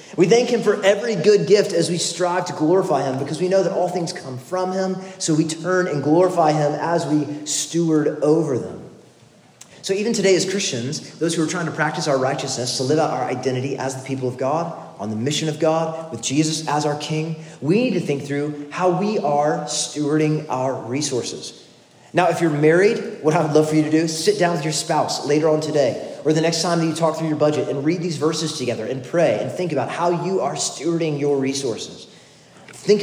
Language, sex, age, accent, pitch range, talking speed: English, male, 30-49, American, 145-175 Hz, 225 wpm